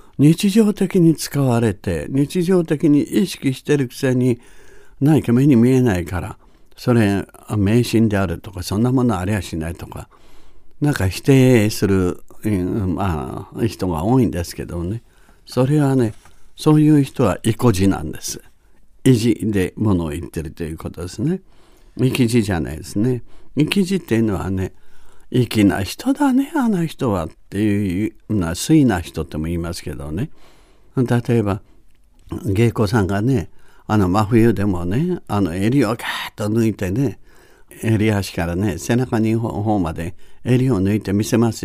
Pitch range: 95-135 Hz